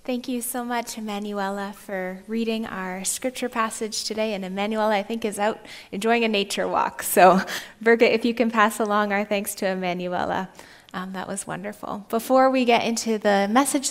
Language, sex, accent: English, female, American